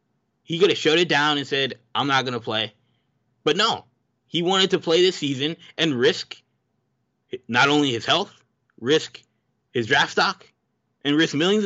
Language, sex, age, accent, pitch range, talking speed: English, male, 20-39, American, 130-165 Hz, 170 wpm